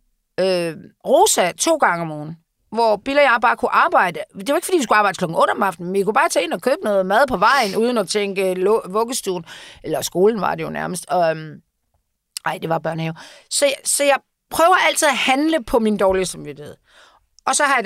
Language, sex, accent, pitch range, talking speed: Danish, female, native, 180-250 Hz, 220 wpm